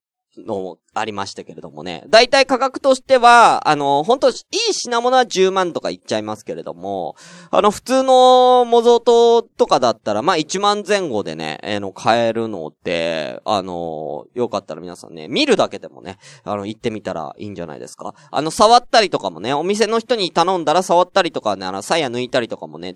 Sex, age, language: male, 20-39, Japanese